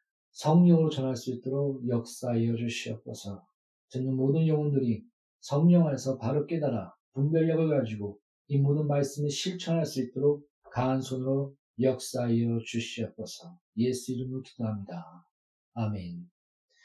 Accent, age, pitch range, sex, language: native, 40-59, 135-180 Hz, male, Korean